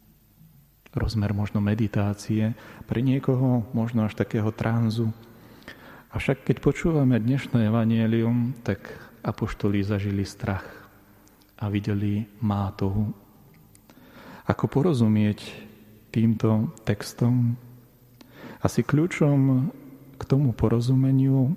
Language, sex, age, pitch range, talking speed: Slovak, male, 40-59, 105-130 Hz, 85 wpm